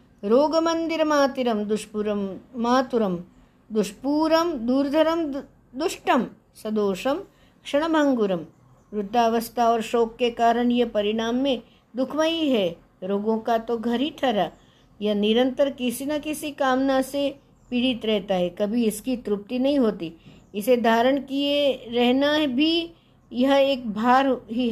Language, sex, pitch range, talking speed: Hindi, female, 215-275 Hz, 120 wpm